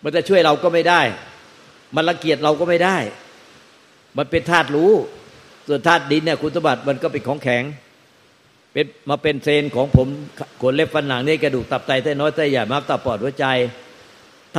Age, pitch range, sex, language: 60-79, 130-155 Hz, male, Thai